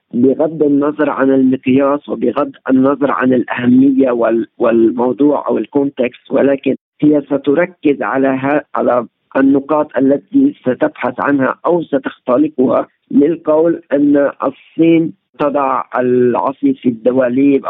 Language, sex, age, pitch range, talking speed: Arabic, male, 50-69, 130-155 Hz, 100 wpm